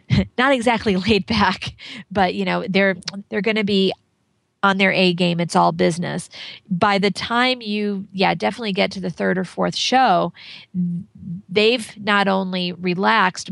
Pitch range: 180-210 Hz